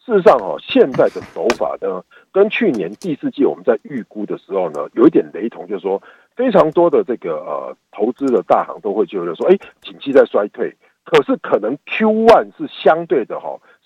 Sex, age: male, 50-69